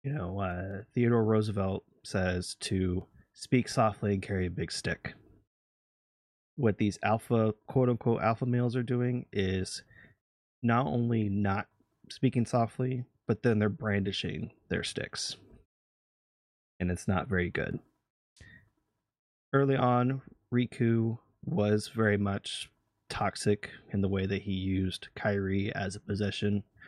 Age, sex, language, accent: 30-49, male, English, American